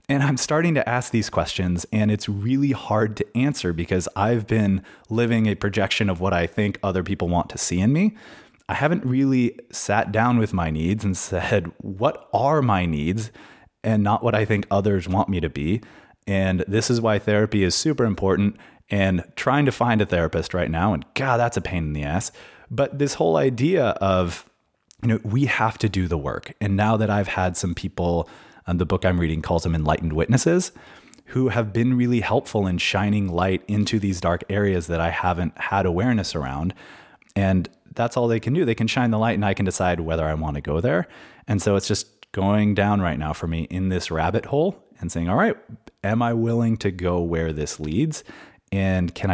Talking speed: 210 wpm